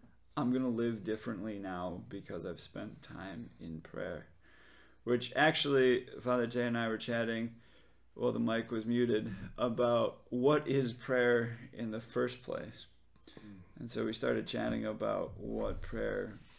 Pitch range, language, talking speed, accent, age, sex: 110-125 Hz, English, 150 wpm, American, 20-39, male